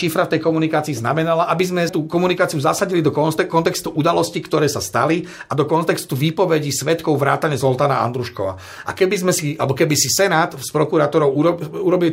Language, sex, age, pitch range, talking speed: Slovak, male, 40-59, 135-160 Hz, 175 wpm